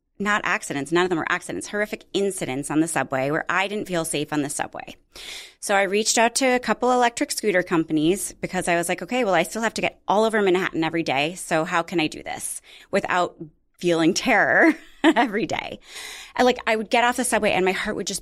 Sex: female